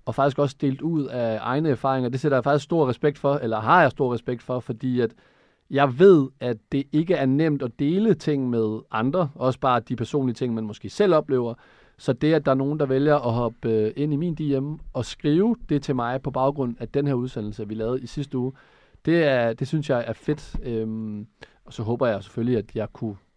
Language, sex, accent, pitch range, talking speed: Danish, male, native, 115-145 Hz, 230 wpm